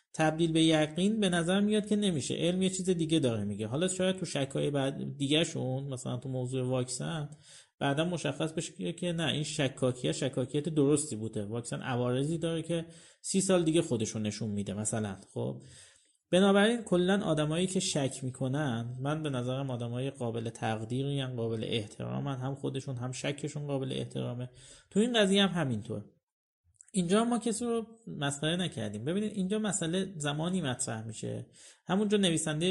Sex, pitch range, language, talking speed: male, 125-175 Hz, Persian, 160 wpm